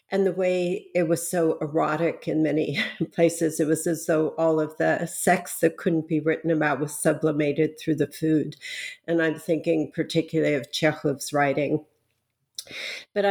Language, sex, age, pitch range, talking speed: English, female, 50-69, 155-180 Hz, 160 wpm